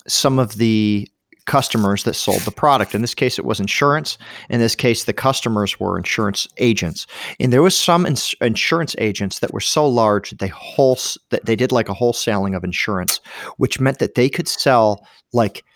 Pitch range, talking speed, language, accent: 105-140 Hz, 195 wpm, English, American